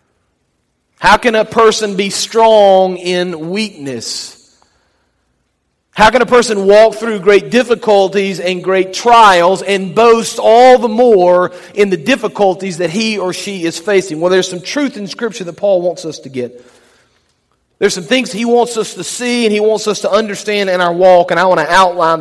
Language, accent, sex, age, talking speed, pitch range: English, American, male, 40-59, 180 wpm, 165-210 Hz